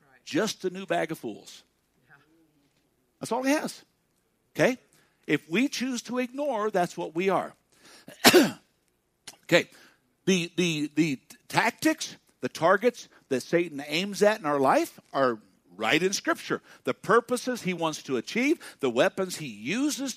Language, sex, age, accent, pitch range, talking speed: English, male, 60-79, American, 140-220 Hz, 145 wpm